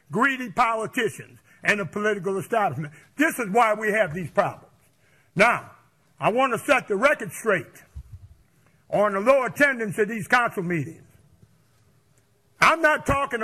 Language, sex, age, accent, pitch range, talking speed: English, male, 60-79, American, 205-270 Hz, 145 wpm